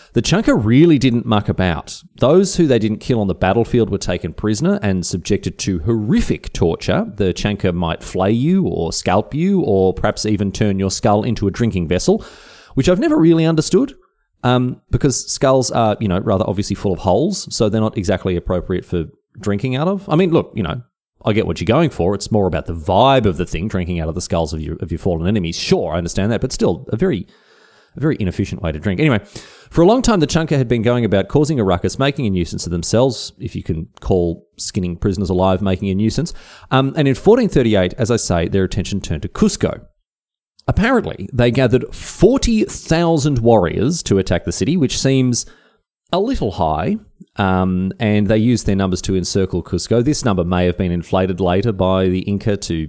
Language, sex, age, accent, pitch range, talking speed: English, male, 30-49, Australian, 90-125 Hz, 210 wpm